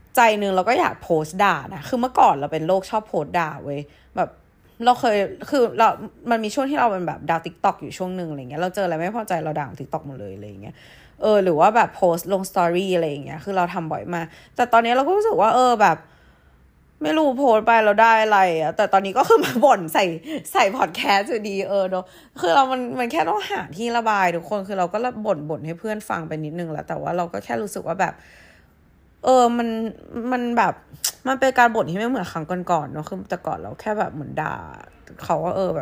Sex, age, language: female, 20-39, Thai